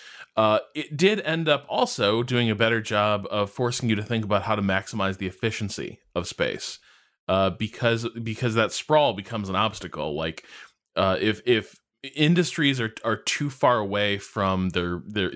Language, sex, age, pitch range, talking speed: English, male, 20-39, 100-125 Hz, 170 wpm